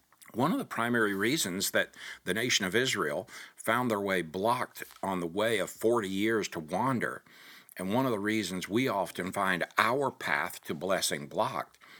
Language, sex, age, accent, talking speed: English, male, 60-79, American, 175 wpm